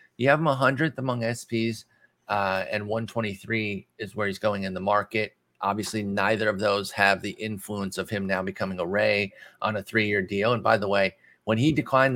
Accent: American